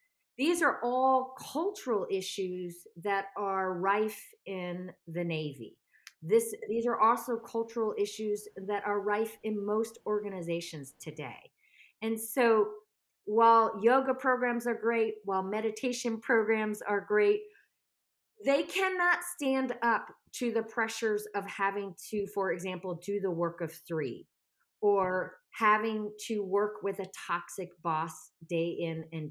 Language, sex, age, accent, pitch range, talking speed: English, female, 40-59, American, 195-245 Hz, 130 wpm